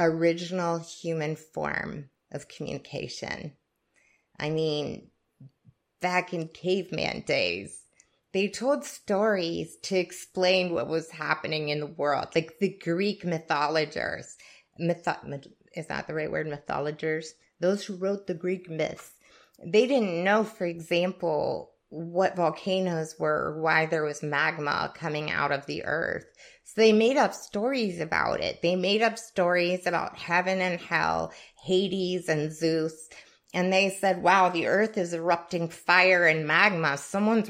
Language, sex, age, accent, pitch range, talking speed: English, female, 30-49, American, 160-210 Hz, 140 wpm